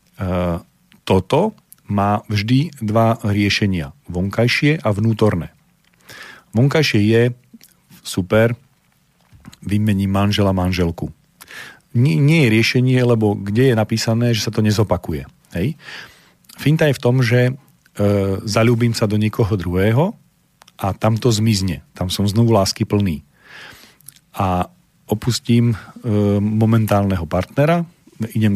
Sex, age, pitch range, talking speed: male, 40-59, 100-125 Hz, 115 wpm